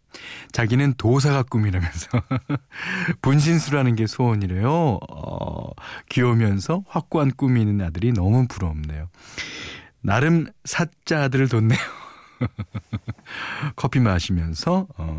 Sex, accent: male, native